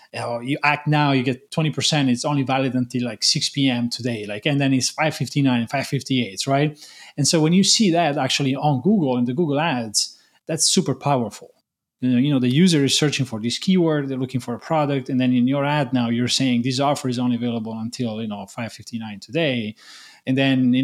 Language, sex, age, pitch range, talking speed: English, male, 30-49, 120-150 Hz, 215 wpm